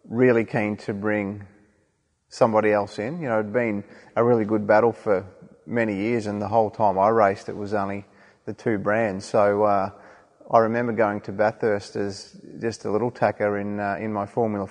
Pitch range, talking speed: 100-110 Hz, 190 wpm